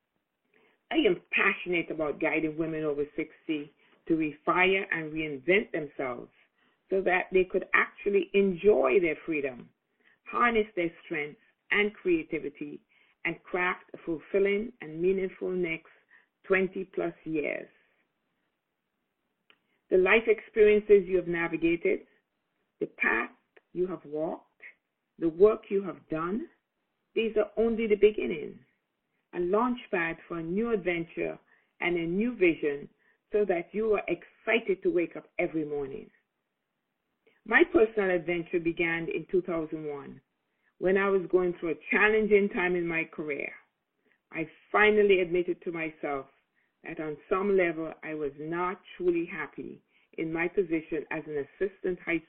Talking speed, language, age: 135 wpm, English, 50-69